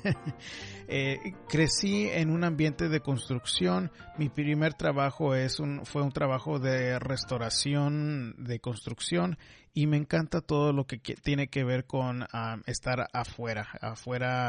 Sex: male